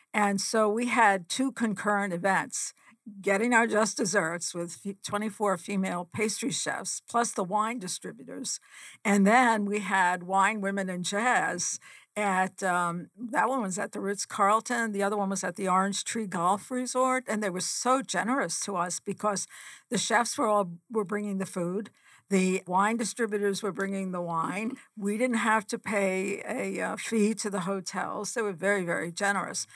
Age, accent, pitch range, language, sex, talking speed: 50-69, American, 195-225 Hz, English, female, 175 wpm